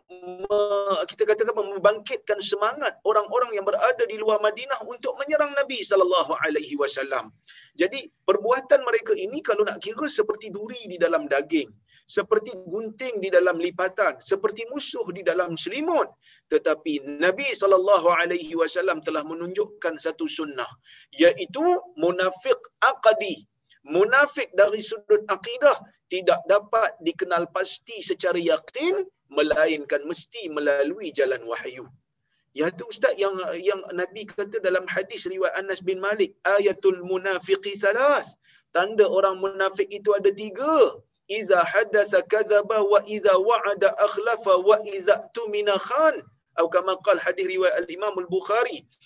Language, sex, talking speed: Malayalam, male, 130 wpm